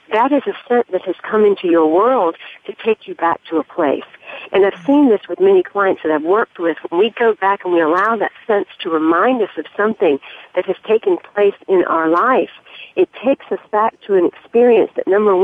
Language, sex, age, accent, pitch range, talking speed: English, female, 50-69, American, 175-290 Hz, 225 wpm